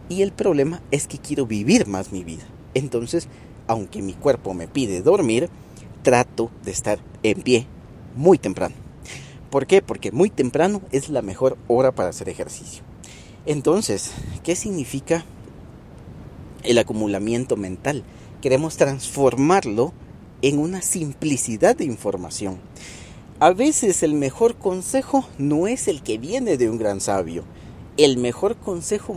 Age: 40-59